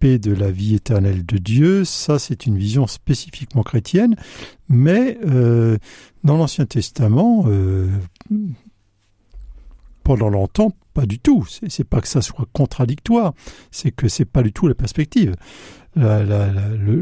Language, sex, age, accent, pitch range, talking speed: French, male, 60-79, French, 105-155 Hz, 150 wpm